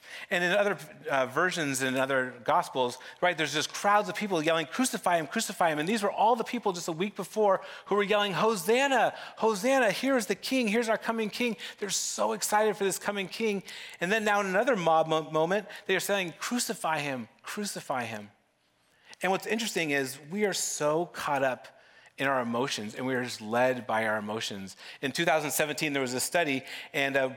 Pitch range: 130-195 Hz